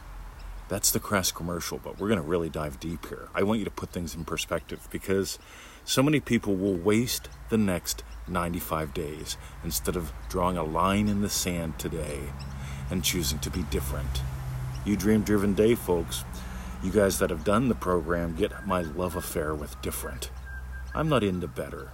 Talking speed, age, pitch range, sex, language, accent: 180 wpm, 50-69, 70-100 Hz, male, English, American